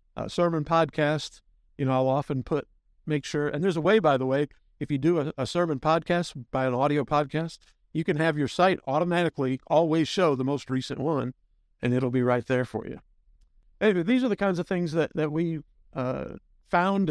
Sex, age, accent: male, 50-69, American